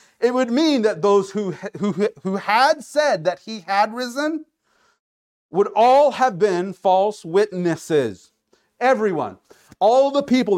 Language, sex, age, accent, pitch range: Japanese, male, 40-59, American, 155-235 Hz